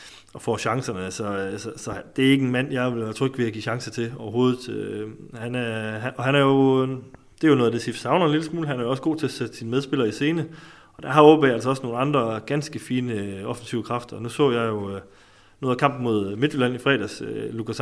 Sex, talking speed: male, 250 wpm